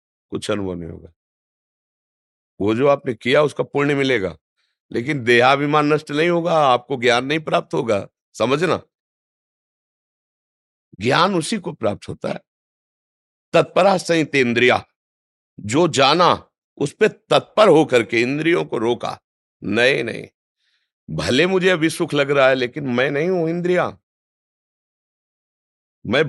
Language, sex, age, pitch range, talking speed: Hindi, male, 50-69, 100-145 Hz, 130 wpm